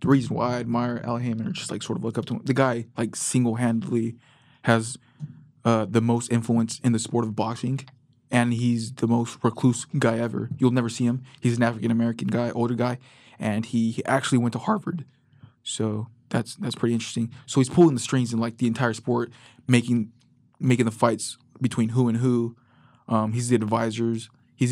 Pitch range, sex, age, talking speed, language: 115-125 Hz, male, 20-39, 200 wpm, English